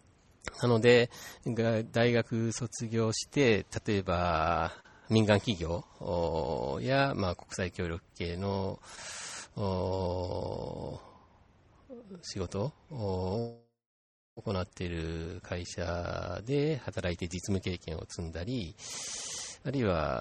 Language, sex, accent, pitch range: Japanese, male, native, 90-115 Hz